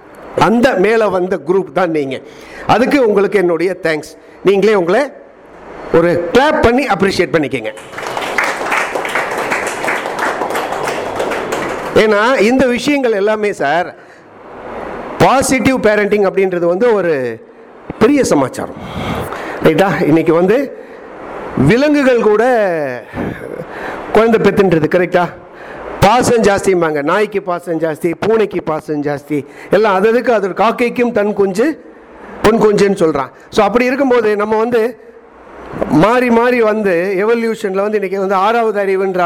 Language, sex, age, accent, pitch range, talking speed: Tamil, male, 50-69, native, 185-235 Hz, 85 wpm